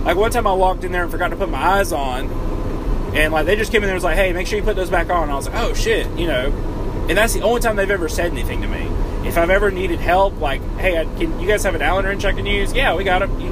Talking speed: 330 wpm